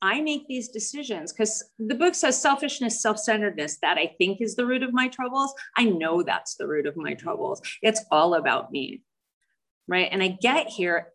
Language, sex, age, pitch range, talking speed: English, female, 30-49, 195-260 Hz, 195 wpm